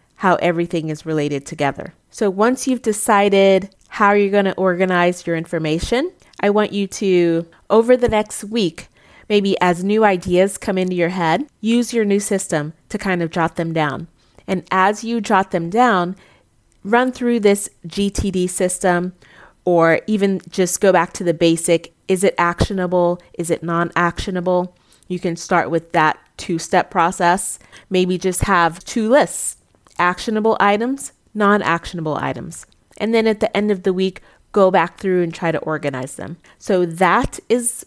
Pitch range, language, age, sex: 175-210 Hz, English, 30-49, female